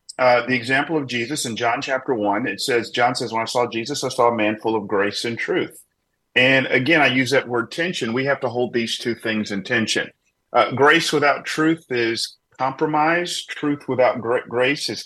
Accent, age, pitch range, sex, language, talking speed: American, 40-59, 120-145 Hz, male, English, 205 wpm